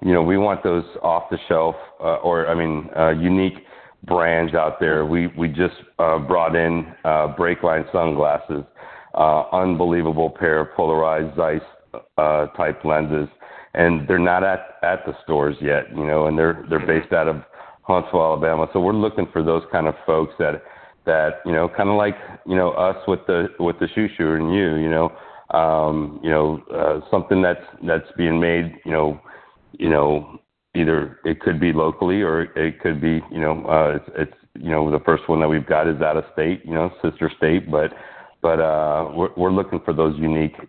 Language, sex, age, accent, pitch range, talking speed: English, male, 40-59, American, 75-90 Hz, 195 wpm